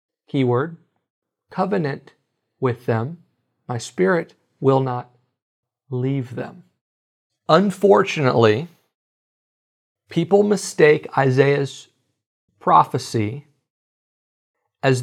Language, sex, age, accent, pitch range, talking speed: English, male, 50-69, American, 130-180 Hz, 65 wpm